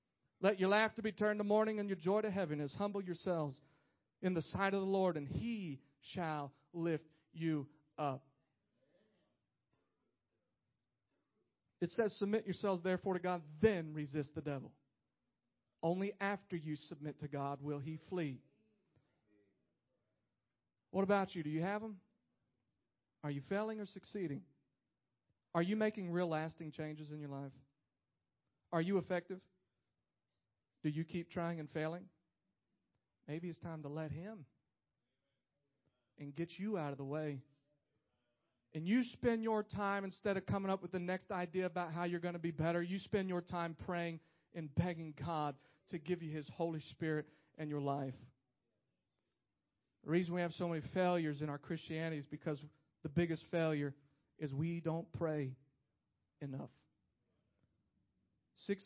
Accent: American